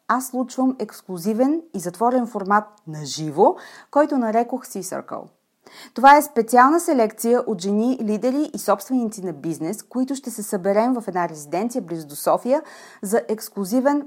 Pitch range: 190-260 Hz